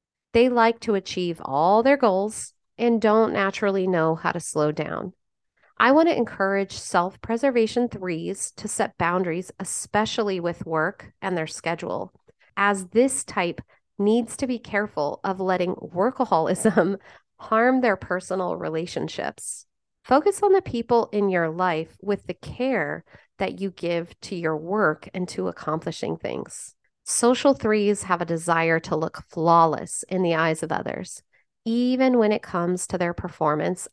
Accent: American